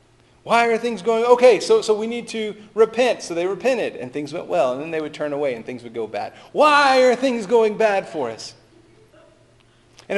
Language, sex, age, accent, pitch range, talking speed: English, male, 40-59, American, 130-185 Hz, 220 wpm